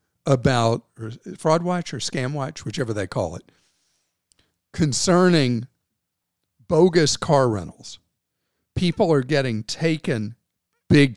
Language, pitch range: English, 115-160 Hz